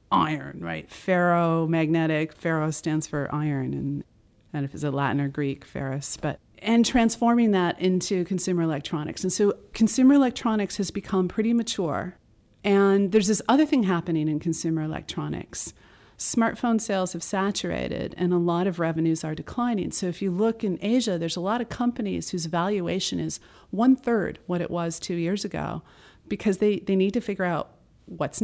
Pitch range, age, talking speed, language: 165-205 Hz, 40-59, 170 wpm, English